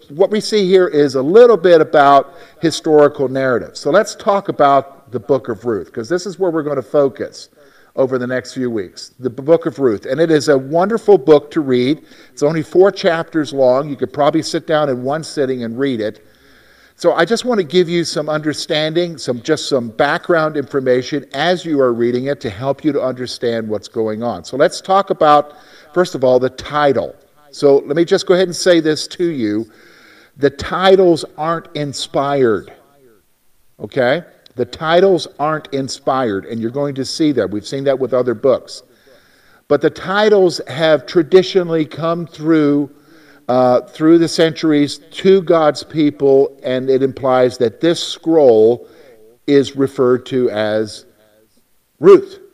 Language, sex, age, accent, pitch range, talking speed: English, male, 50-69, American, 130-170 Hz, 175 wpm